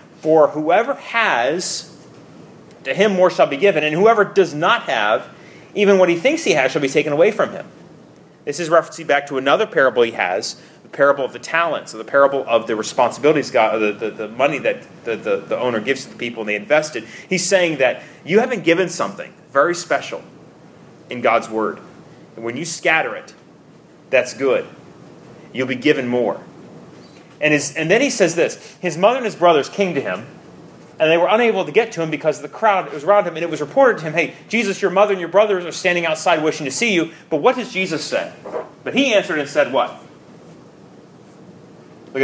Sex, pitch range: male, 150-200 Hz